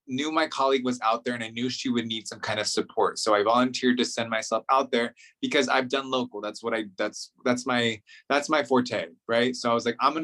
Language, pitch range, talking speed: English, 120-150 Hz, 260 wpm